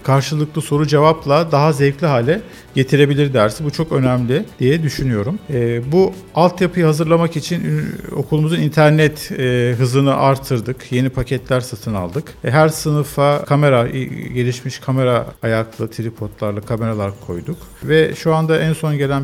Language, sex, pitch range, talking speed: Turkish, male, 115-155 Hz, 125 wpm